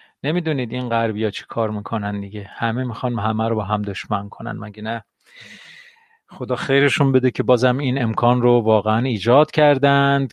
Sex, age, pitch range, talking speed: male, 40-59, 125-155 Hz, 165 wpm